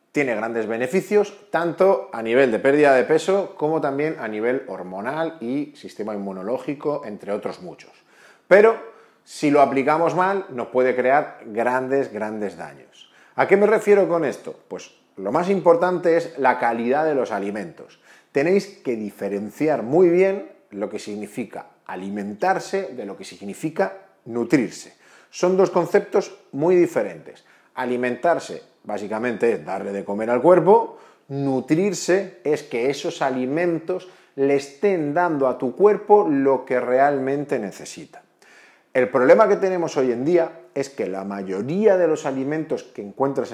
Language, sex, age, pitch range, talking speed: Spanish, male, 40-59, 125-185 Hz, 145 wpm